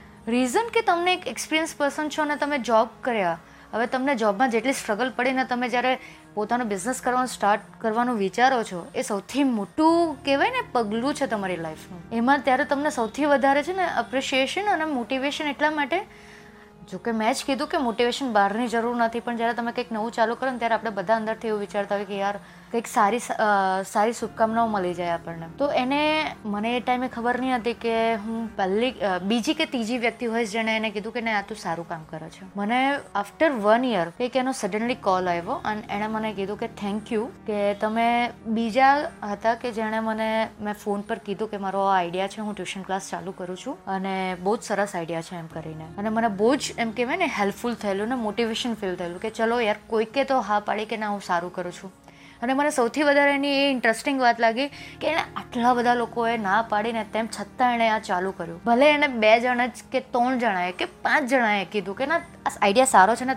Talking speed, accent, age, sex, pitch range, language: 210 wpm, native, 20-39, female, 205-260 Hz, Gujarati